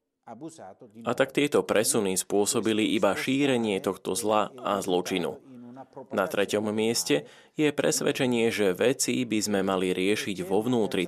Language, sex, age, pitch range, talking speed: Slovak, male, 20-39, 100-130 Hz, 130 wpm